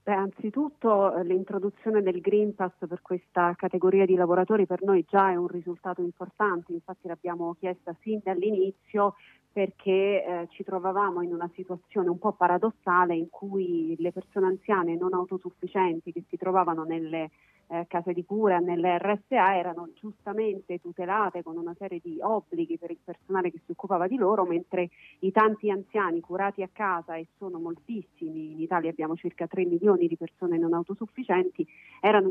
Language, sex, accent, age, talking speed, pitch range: Italian, female, native, 30-49, 160 wpm, 175-200 Hz